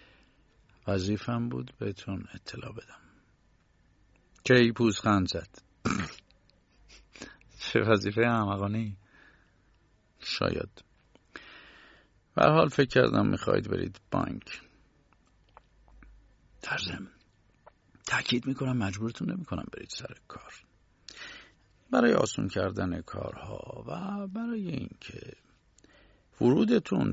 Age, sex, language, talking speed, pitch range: 50-69, male, Persian, 75 wpm, 95-125 Hz